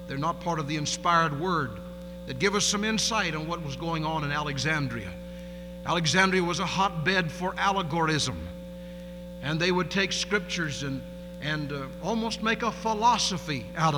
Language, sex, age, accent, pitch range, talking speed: English, male, 60-79, American, 175-185 Hz, 165 wpm